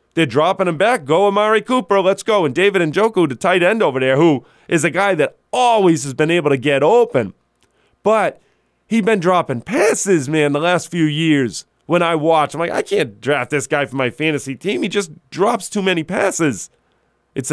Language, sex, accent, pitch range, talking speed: English, male, American, 140-190 Hz, 205 wpm